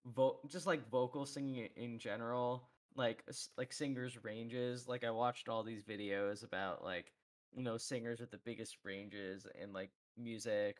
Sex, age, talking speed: male, 10-29, 155 wpm